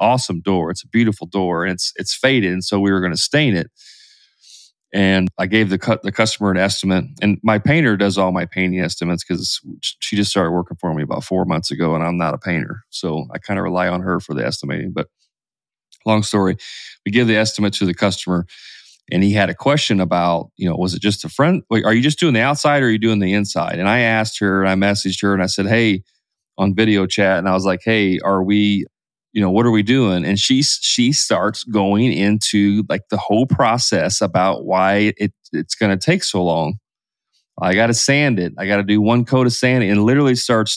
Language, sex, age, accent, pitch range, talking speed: English, male, 30-49, American, 95-110 Hz, 235 wpm